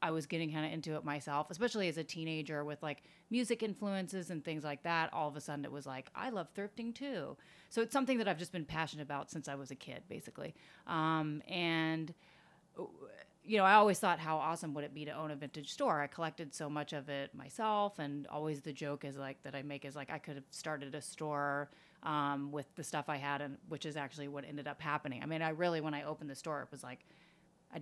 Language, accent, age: English, American, 30-49